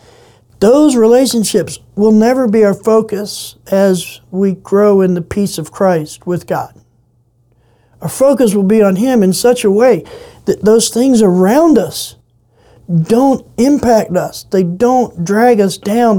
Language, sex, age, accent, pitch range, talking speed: English, male, 60-79, American, 175-230 Hz, 150 wpm